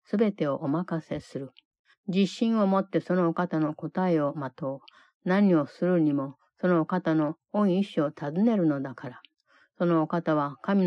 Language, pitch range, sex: Japanese, 155-195 Hz, female